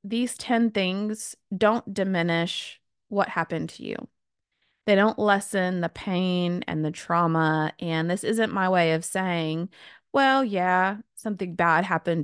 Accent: American